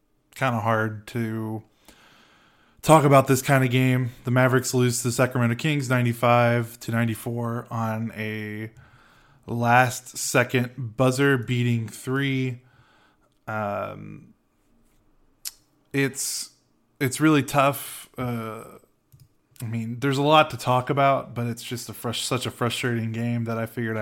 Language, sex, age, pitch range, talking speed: English, male, 20-39, 115-135 Hz, 130 wpm